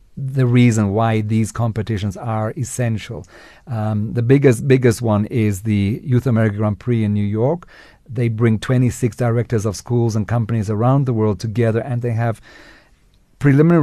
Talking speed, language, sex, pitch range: 160 wpm, English, male, 115-135 Hz